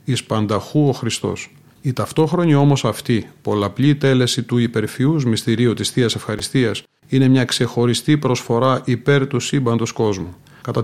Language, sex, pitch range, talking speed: Greek, male, 110-140 Hz, 125 wpm